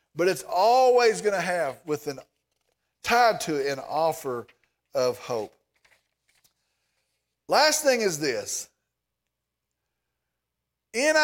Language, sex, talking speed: English, male, 105 wpm